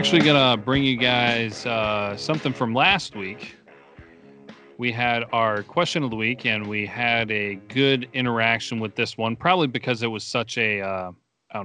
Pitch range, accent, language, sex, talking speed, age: 100-120 Hz, American, English, male, 175 wpm, 30-49